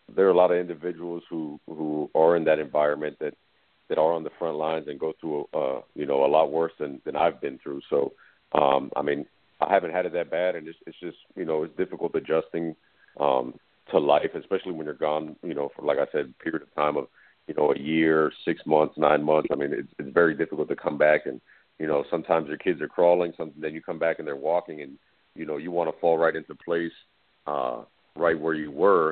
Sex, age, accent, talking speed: male, 50-69, American, 245 wpm